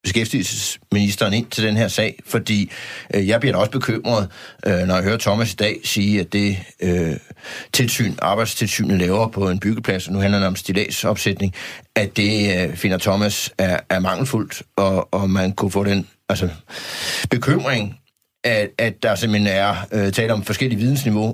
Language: Danish